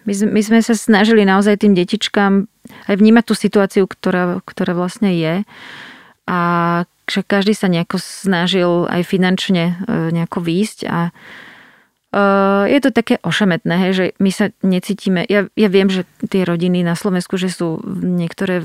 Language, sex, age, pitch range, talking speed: Slovak, female, 30-49, 175-205 Hz, 140 wpm